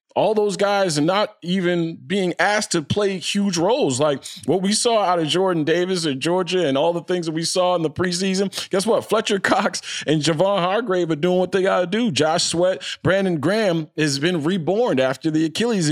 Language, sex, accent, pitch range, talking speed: English, male, American, 130-170 Hz, 210 wpm